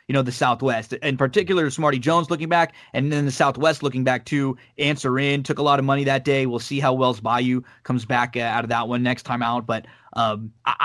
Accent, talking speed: American, 245 wpm